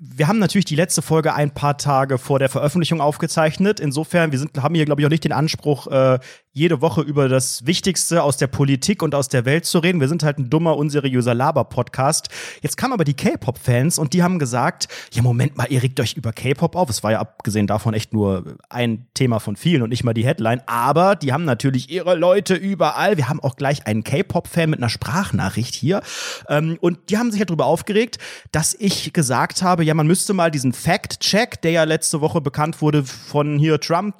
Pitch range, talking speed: 135-175 Hz, 215 wpm